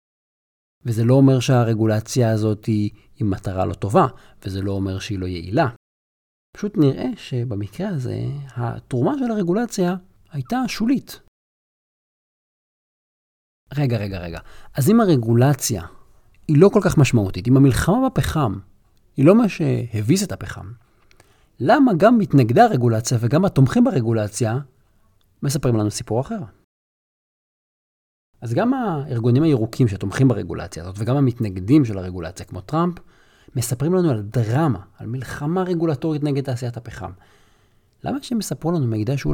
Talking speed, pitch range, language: 130 wpm, 105-145 Hz, Hebrew